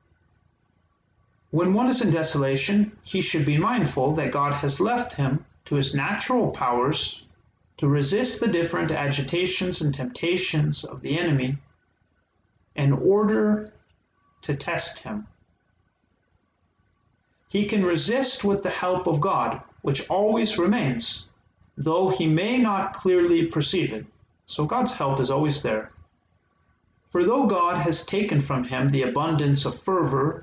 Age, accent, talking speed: 40-59, American, 135 wpm